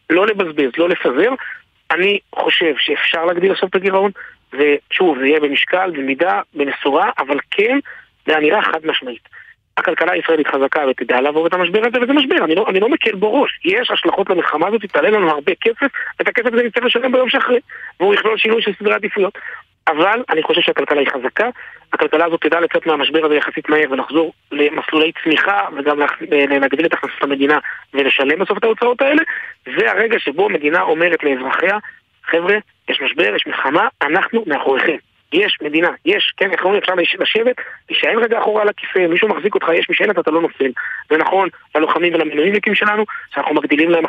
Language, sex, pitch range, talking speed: Hebrew, male, 155-220 Hz, 175 wpm